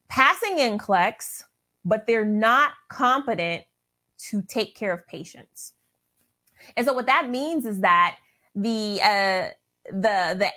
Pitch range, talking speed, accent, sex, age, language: 190-275 Hz, 115 wpm, American, female, 30-49, English